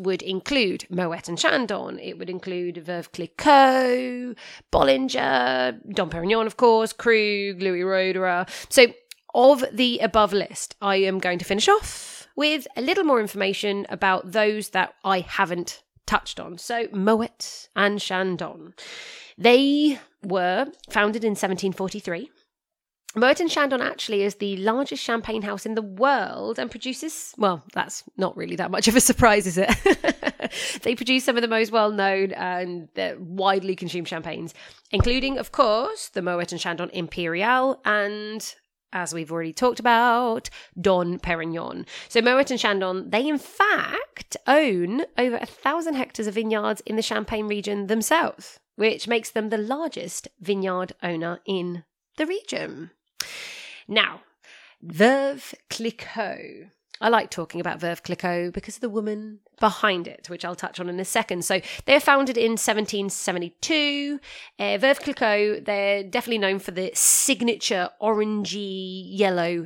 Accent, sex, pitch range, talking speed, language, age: British, female, 185-250 Hz, 145 wpm, English, 30-49